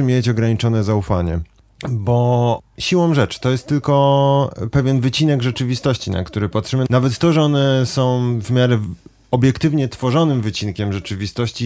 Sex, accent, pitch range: male, native, 110-130 Hz